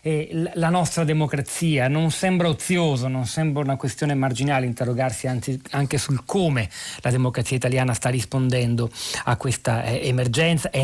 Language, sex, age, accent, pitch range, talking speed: Italian, male, 40-59, native, 125-155 Hz, 135 wpm